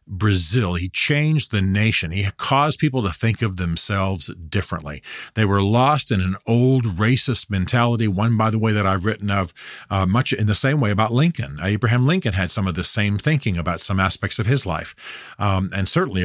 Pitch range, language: 95-125 Hz, English